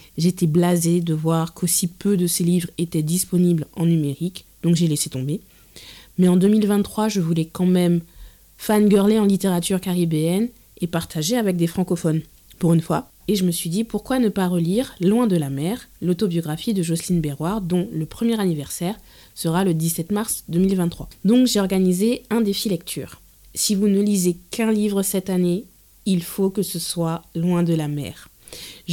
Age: 20-39